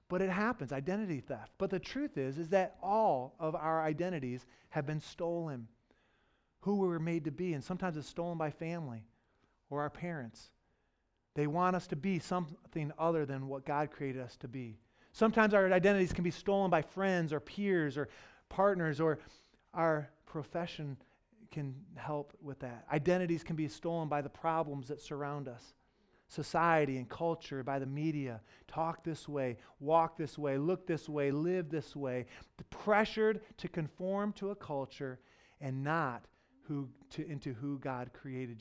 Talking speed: 170 wpm